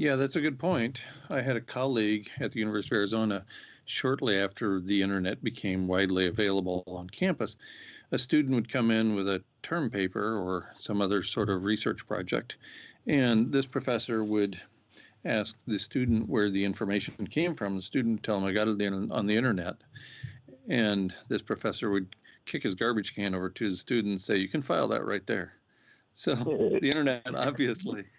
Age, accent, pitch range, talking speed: 50-69, American, 100-135 Hz, 185 wpm